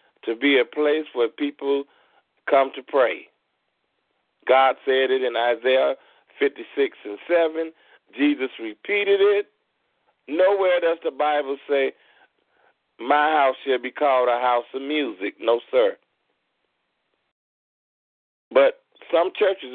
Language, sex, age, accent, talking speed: English, male, 40-59, American, 120 wpm